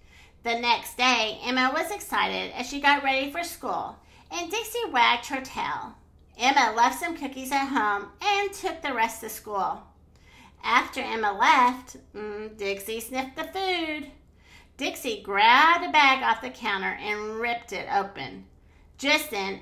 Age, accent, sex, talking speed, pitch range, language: 40-59, American, female, 150 wpm, 210-290 Hz, English